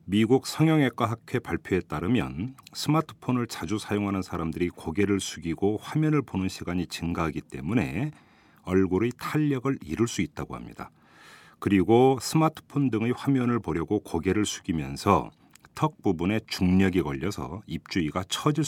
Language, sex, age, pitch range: Korean, male, 40-59, 85-120 Hz